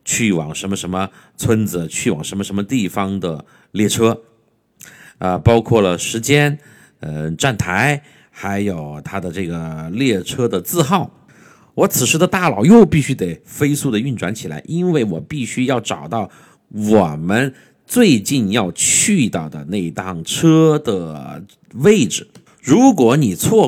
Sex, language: male, Chinese